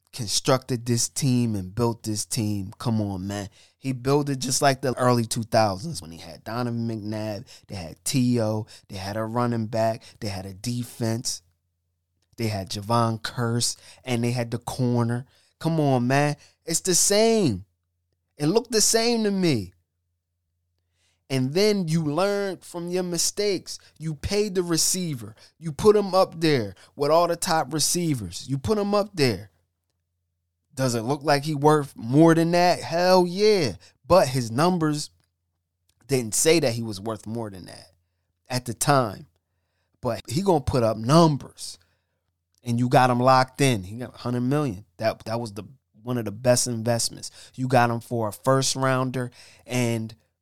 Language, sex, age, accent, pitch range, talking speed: English, male, 20-39, American, 95-145 Hz, 170 wpm